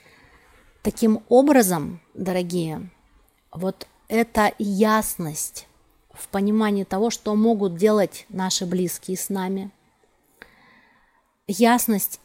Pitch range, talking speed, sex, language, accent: 180-220 Hz, 85 wpm, female, Russian, native